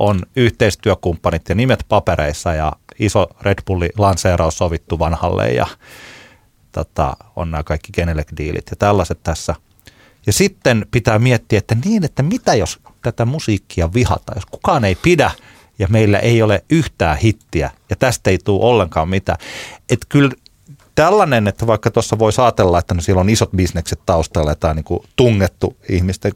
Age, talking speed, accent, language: 30-49, 150 wpm, native, Finnish